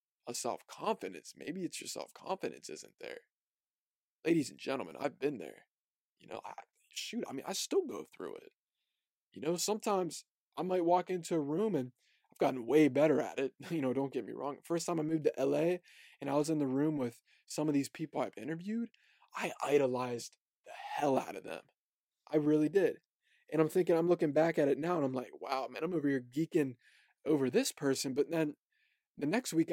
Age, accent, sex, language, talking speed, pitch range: 20-39, American, male, English, 210 wpm, 145-205 Hz